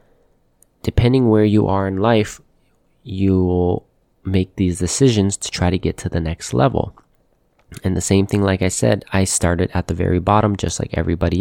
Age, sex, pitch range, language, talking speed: 20-39, male, 90-105 Hz, English, 185 wpm